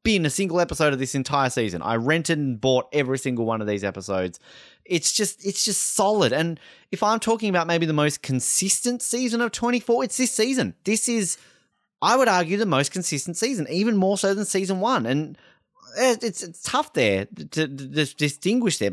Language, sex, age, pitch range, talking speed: English, male, 20-39, 120-190 Hz, 200 wpm